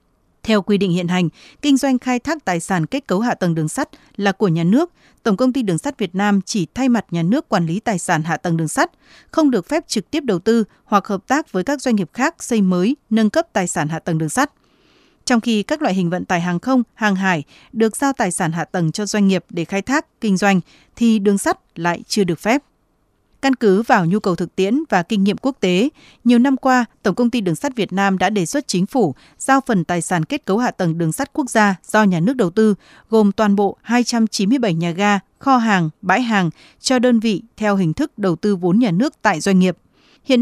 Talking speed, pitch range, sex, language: 250 wpm, 180-245 Hz, female, Vietnamese